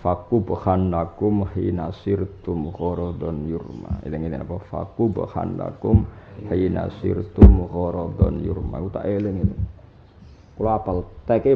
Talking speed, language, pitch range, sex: 110 wpm, Indonesian, 90-110 Hz, male